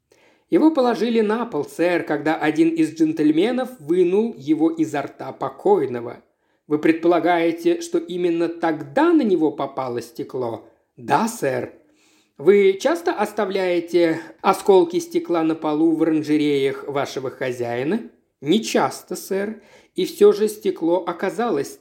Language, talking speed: Russian, 120 wpm